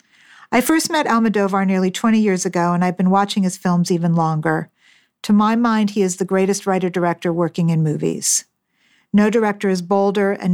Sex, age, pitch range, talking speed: female, 50-69, 180-210 Hz, 180 wpm